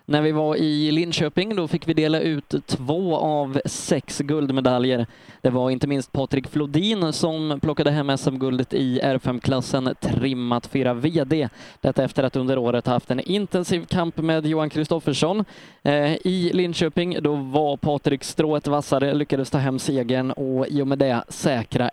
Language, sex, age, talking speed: Swedish, male, 20-39, 160 wpm